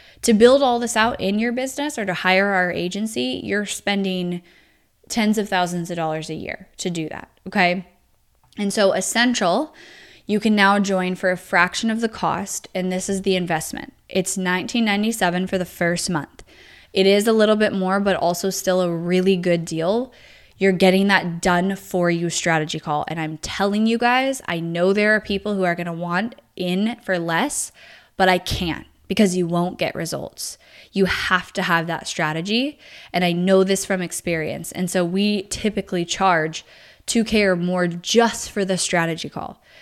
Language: English